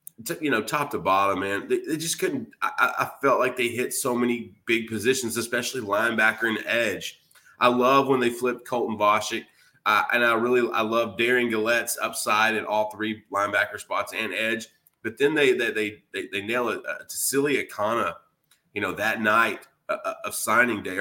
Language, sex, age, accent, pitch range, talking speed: English, male, 30-49, American, 105-135 Hz, 195 wpm